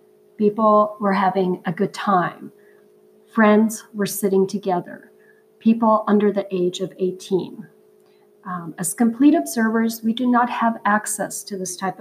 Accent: American